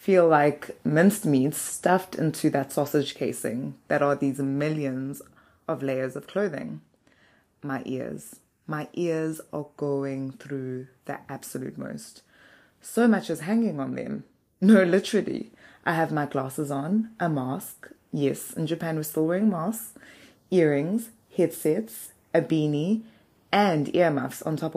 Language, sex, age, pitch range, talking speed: English, female, 20-39, 140-180 Hz, 140 wpm